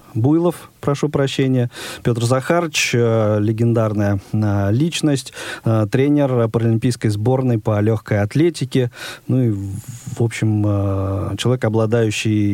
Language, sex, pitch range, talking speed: Russian, male, 110-135 Hz, 90 wpm